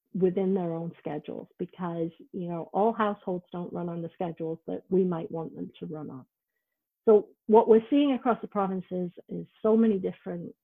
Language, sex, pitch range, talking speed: English, female, 170-215 Hz, 185 wpm